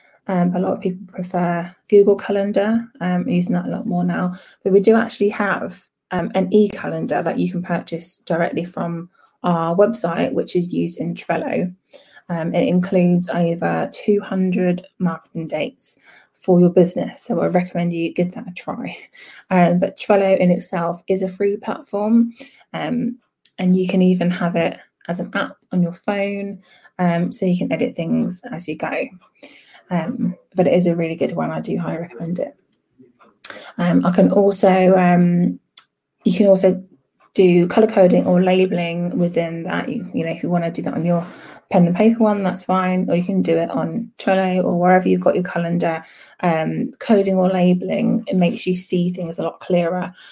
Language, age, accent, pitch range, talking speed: English, 20-39, British, 175-200 Hz, 185 wpm